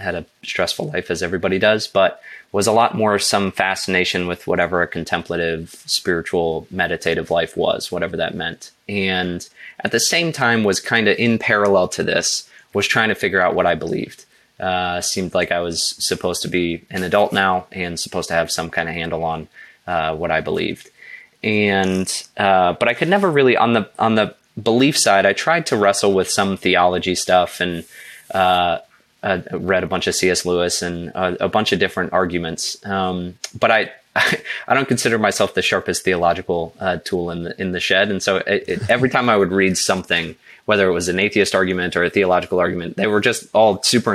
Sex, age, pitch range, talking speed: male, 20-39, 85-100 Hz, 200 wpm